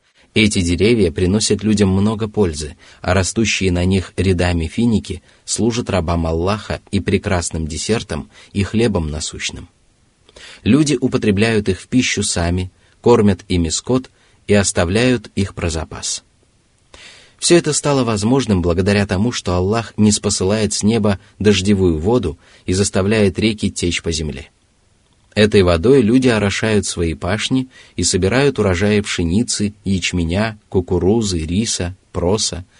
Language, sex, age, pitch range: Russian, male, 30-49, 90-110 Hz